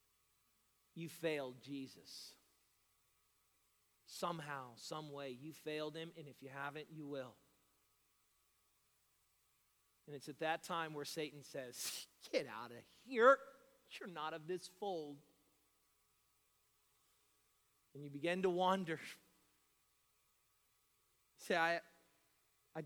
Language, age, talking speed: English, 40-59, 105 wpm